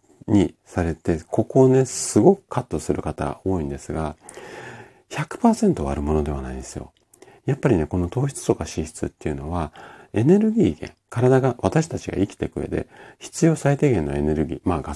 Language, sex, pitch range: Japanese, male, 80-130 Hz